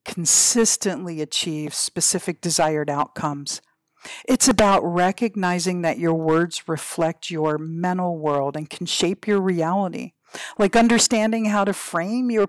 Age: 50-69